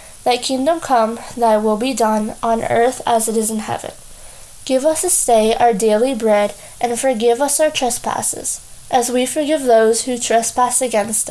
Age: 10-29